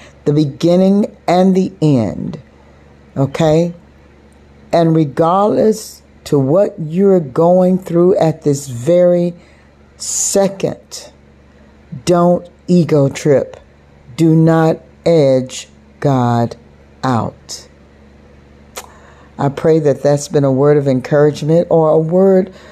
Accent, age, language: American, 60-79, English